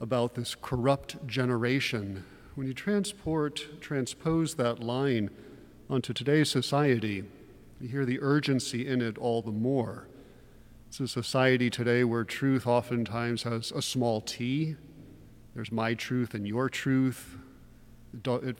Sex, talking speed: male, 130 wpm